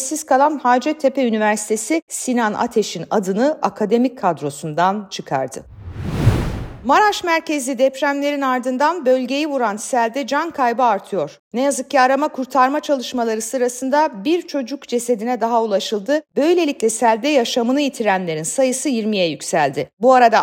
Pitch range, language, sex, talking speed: 215-280 Hz, Turkish, female, 120 wpm